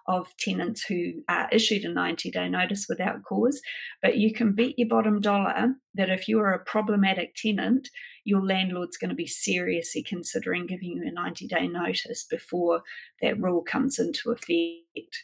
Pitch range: 180-230 Hz